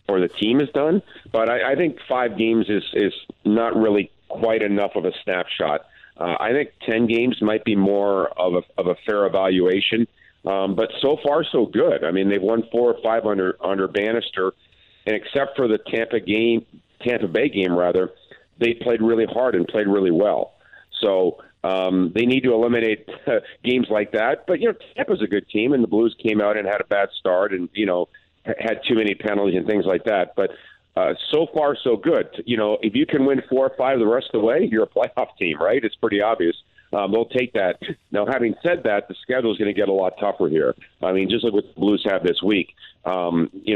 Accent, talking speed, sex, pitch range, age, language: American, 225 wpm, male, 95-115 Hz, 50-69, English